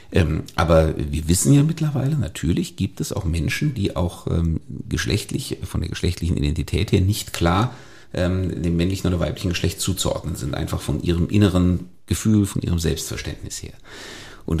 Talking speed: 165 wpm